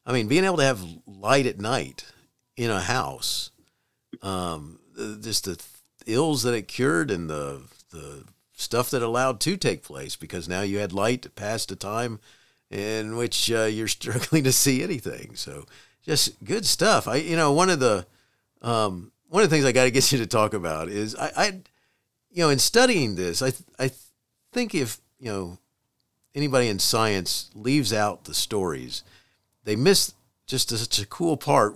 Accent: American